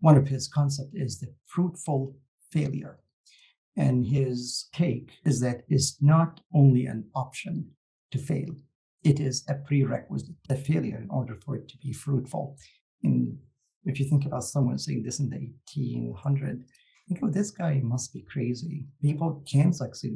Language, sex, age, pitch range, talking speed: English, male, 50-69, 125-150 Hz, 160 wpm